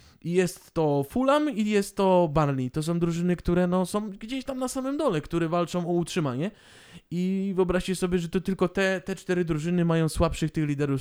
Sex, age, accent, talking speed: male, 20-39, native, 195 wpm